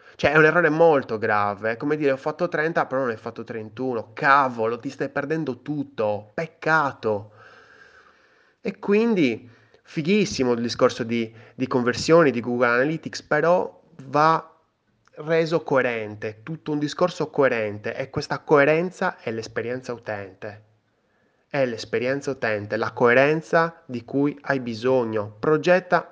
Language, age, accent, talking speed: Italian, 20-39, native, 130 wpm